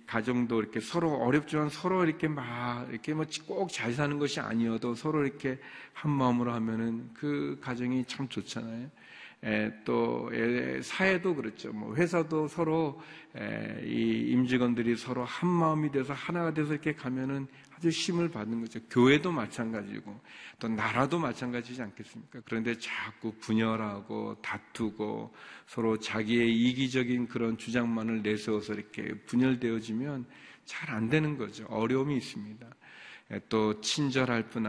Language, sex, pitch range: Korean, male, 110-140 Hz